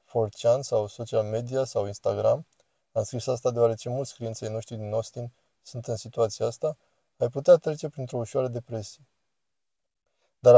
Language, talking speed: Romanian, 145 wpm